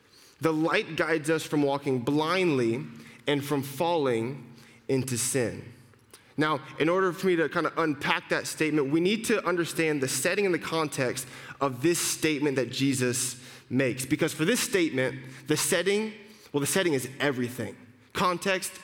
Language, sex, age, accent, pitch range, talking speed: English, male, 20-39, American, 135-170 Hz, 160 wpm